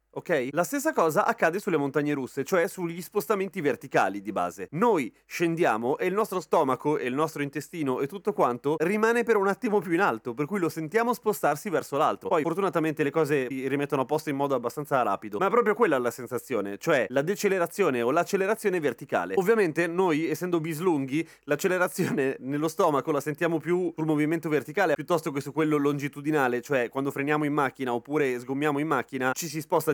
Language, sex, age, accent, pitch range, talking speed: Italian, male, 30-49, native, 135-190 Hz, 190 wpm